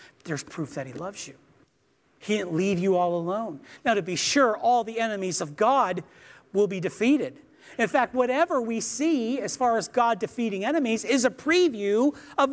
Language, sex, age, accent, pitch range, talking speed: English, male, 40-59, American, 190-275 Hz, 185 wpm